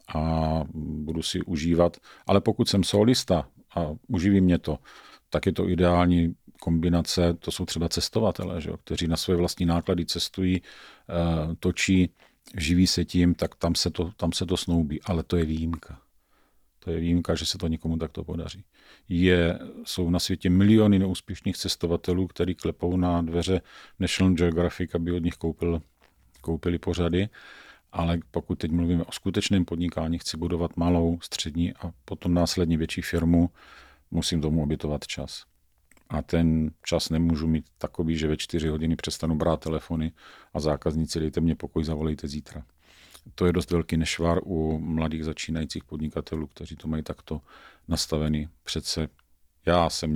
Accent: native